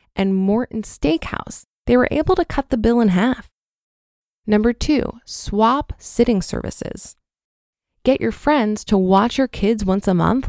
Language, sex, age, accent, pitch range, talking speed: English, female, 20-39, American, 190-240 Hz, 155 wpm